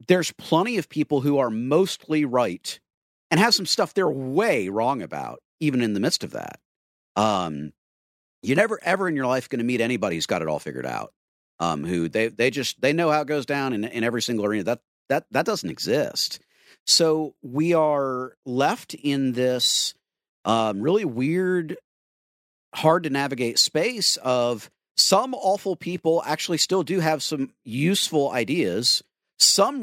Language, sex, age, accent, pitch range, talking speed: English, male, 50-69, American, 125-165 Hz, 170 wpm